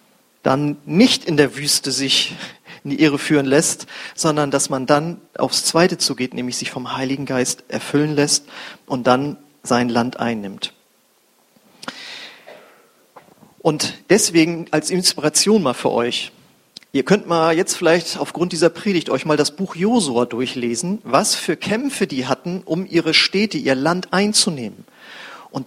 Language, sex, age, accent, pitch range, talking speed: German, male, 40-59, German, 150-210 Hz, 145 wpm